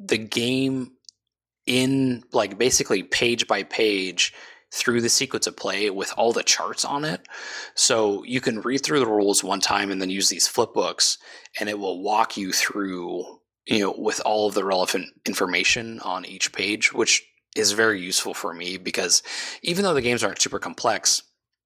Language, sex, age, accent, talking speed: English, male, 20-39, American, 175 wpm